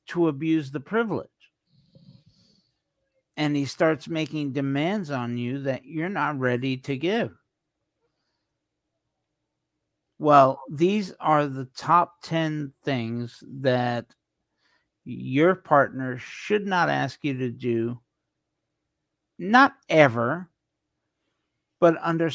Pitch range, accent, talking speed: 130-170 Hz, American, 100 wpm